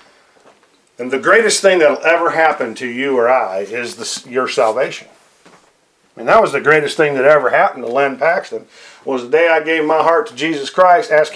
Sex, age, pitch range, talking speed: male, 50-69, 160-240 Hz, 200 wpm